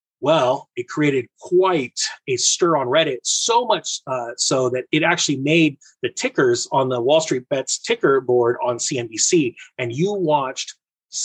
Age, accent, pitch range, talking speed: 30-49, American, 140-180 Hz, 160 wpm